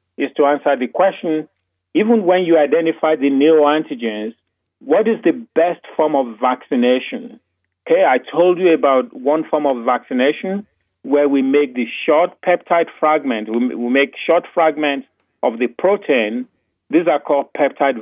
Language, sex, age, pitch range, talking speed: English, male, 40-59, 120-170 Hz, 150 wpm